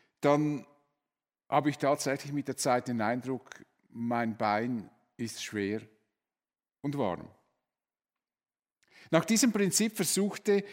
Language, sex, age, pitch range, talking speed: German, male, 50-69, 145-195 Hz, 105 wpm